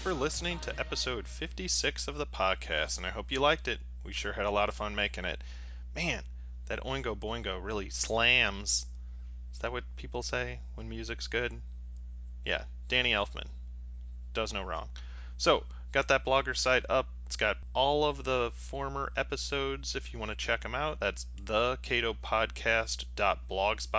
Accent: American